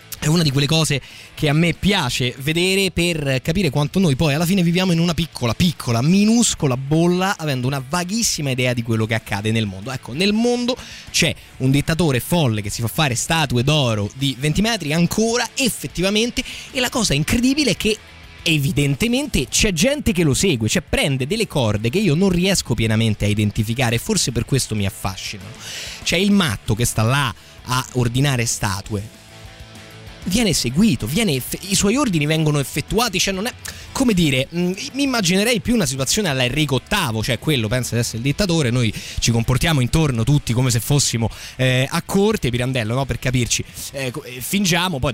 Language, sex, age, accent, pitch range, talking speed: Italian, male, 20-39, native, 120-185 Hz, 180 wpm